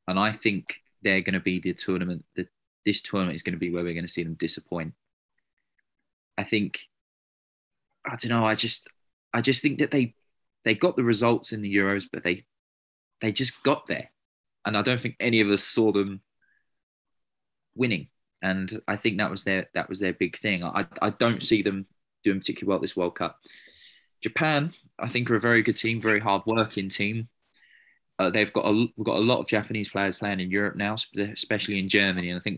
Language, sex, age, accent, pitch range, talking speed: English, male, 20-39, British, 90-110 Hz, 210 wpm